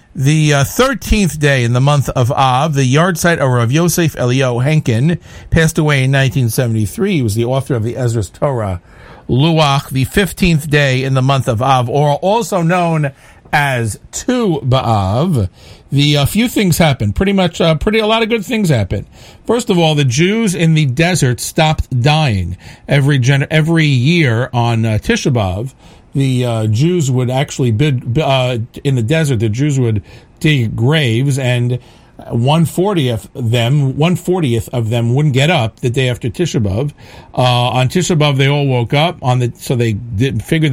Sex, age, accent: male, 50-69, American